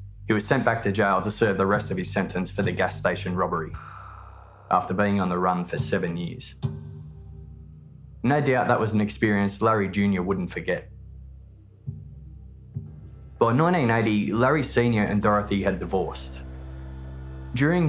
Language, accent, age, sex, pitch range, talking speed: English, Australian, 20-39, male, 80-110 Hz, 150 wpm